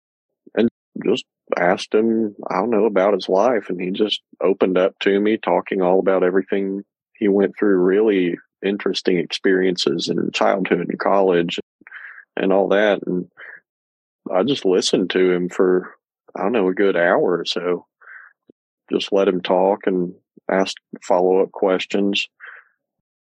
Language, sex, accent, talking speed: English, male, American, 145 wpm